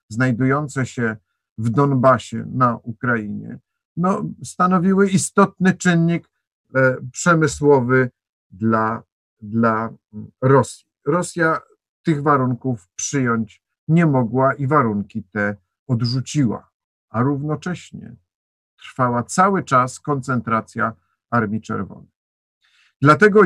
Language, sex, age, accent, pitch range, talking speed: Polish, male, 50-69, native, 115-155 Hz, 80 wpm